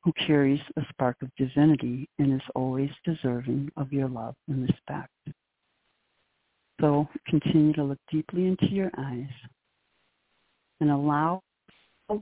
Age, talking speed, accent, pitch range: 60-79, 130 wpm, American, 140-175 Hz